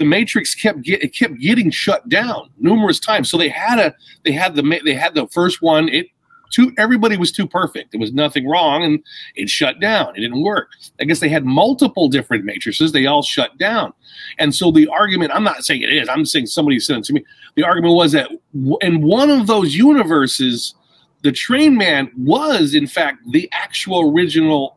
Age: 40-59